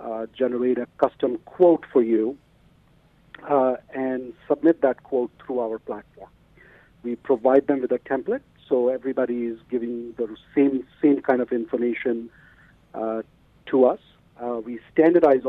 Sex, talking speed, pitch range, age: male, 145 wpm, 115-135 Hz, 50-69